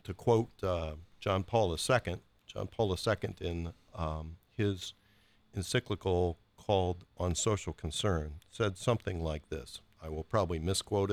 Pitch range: 85-105 Hz